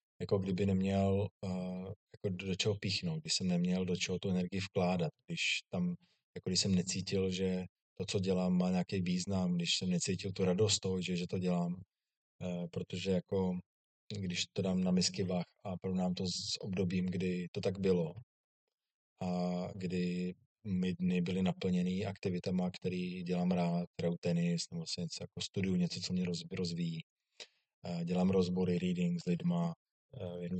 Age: 20-39